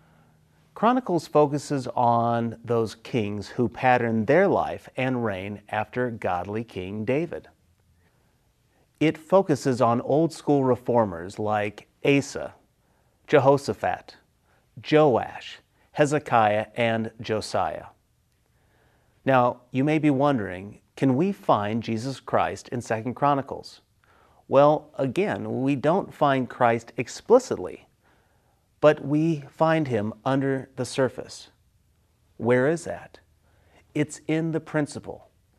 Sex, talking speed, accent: male, 105 wpm, American